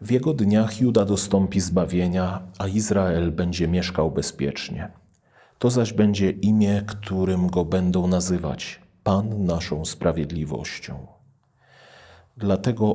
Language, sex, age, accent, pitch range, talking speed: Polish, male, 40-59, native, 85-100 Hz, 105 wpm